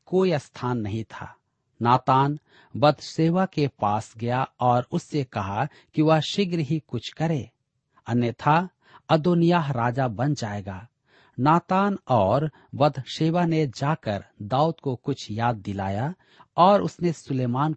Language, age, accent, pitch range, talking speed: Hindi, 50-69, native, 115-160 Hz, 120 wpm